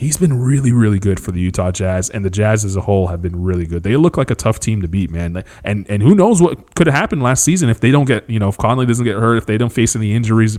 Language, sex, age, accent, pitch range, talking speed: English, male, 30-49, American, 95-120 Hz, 310 wpm